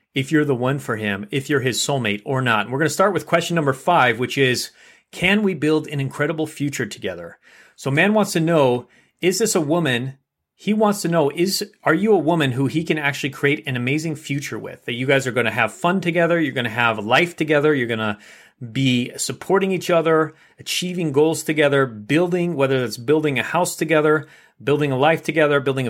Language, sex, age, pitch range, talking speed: English, male, 30-49, 125-165 Hz, 215 wpm